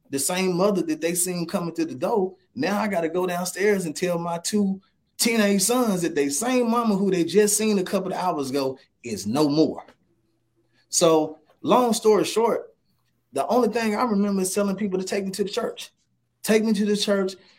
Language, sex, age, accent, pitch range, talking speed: English, male, 20-39, American, 155-210 Hz, 210 wpm